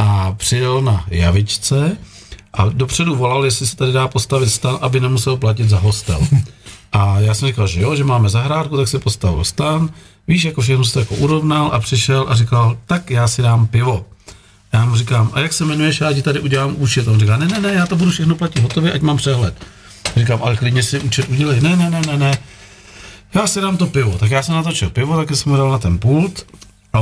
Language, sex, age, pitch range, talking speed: Czech, male, 50-69, 105-140 Hz, 225 wpm